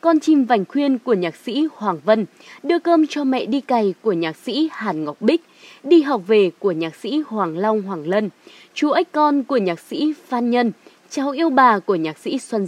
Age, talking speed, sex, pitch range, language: 20-39, 220 wpm, female, 210-300 Hz, Vietnamese